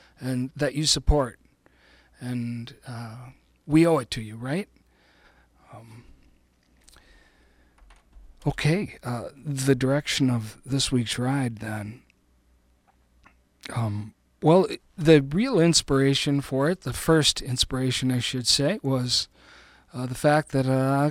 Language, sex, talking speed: English, male, 120 wpm